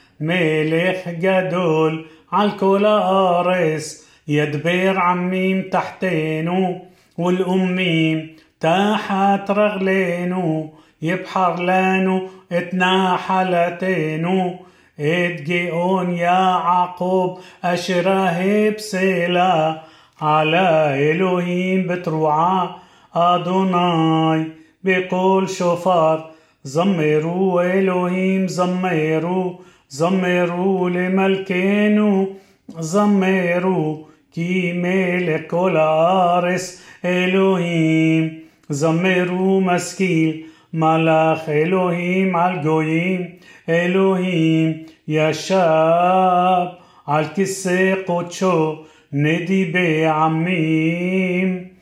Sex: male